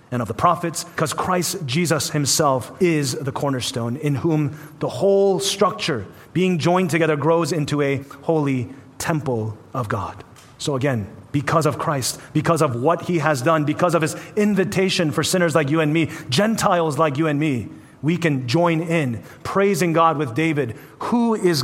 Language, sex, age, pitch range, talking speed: English, male, 30-49, 125-160 Hz, 170 wpm